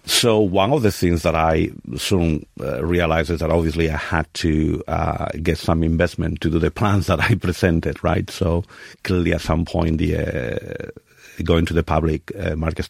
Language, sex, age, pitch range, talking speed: English, male, 50-69, 80-95 Hz, 190 wpm